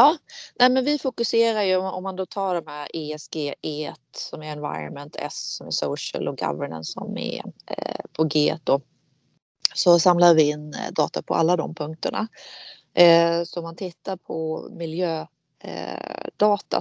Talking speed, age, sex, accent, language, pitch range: 160 wpm, 30-49, female, native, Swedish, 155-185 Hz